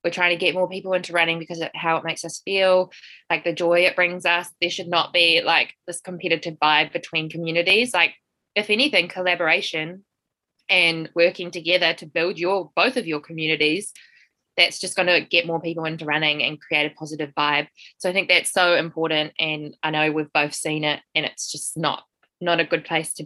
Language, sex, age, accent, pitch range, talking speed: English, female, 20-39, Australian, 155-180 Hz, 210 wpm